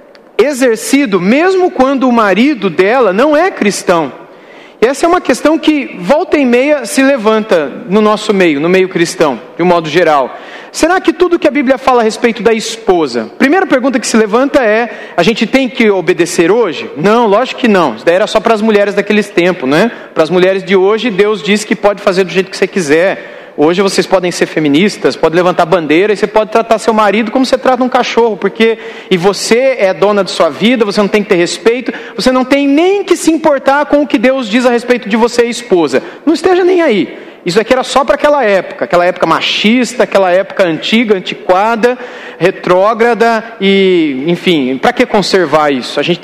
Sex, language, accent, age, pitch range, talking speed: male, Portuguese, Brazilian, 40-59, 195-265 Hz, 210 wpm